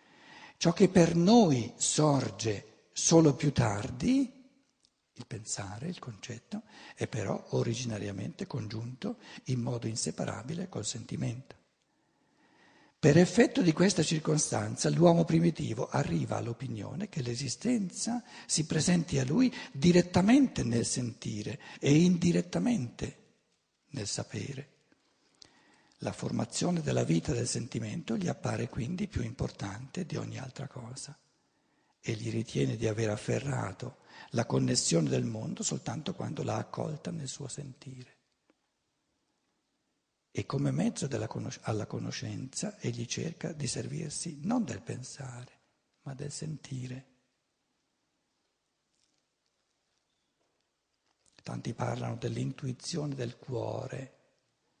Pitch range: 120-170 Hz